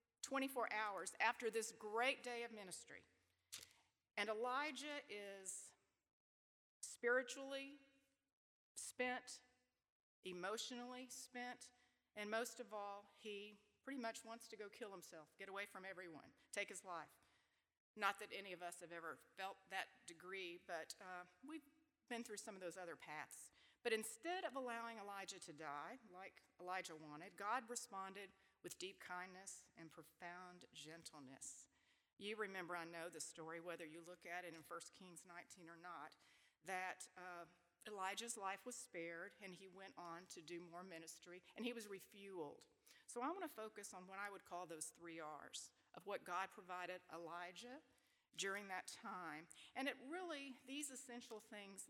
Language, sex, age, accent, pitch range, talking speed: English, female, 40-59, American, 175-240 Hz, 155 wpm